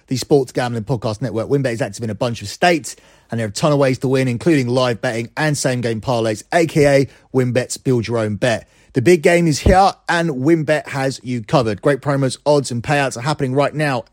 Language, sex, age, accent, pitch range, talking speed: English, male, 30-49, British, 120-160 Hz, 225 wpm